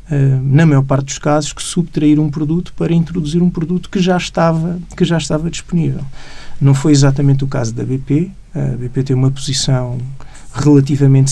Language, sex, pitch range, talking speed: Portuguese, male, 130-150 Hz, 175 wpm